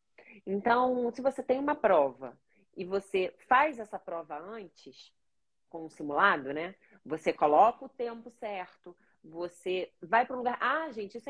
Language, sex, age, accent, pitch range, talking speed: Portuguese, female, 30-49, Brazilian, 180-245 Hz, 155 wpm